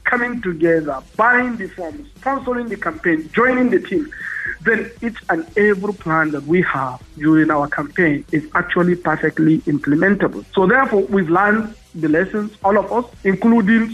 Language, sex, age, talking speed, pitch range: English, male, 50-69, 155 wpm, 170-225 Hz